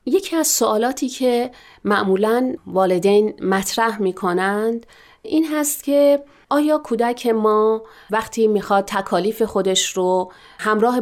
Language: Persian